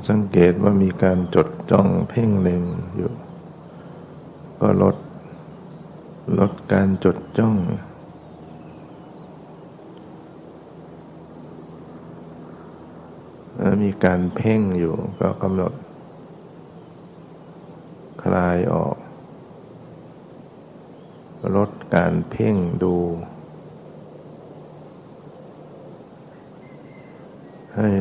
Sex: male